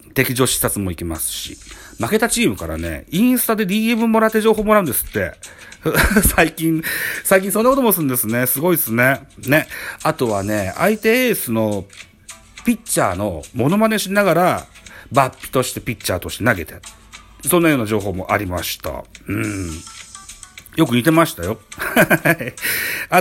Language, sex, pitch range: Japanese, male, 95-160 Hz